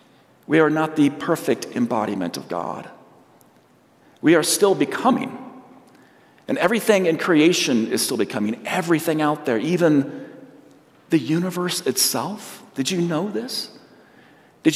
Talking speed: 125 wpm